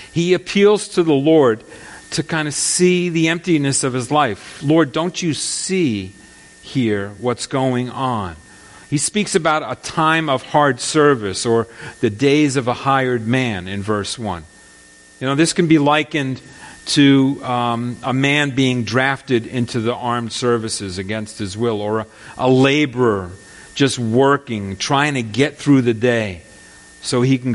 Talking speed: 160 wpm